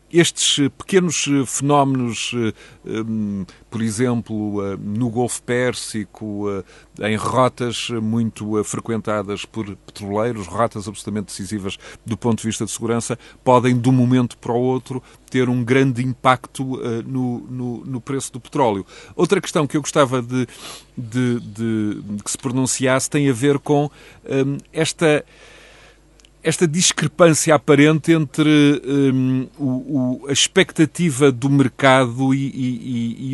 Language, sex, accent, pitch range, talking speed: Portuguese, male, Portuguese, 115-150 Hz, 115 wpm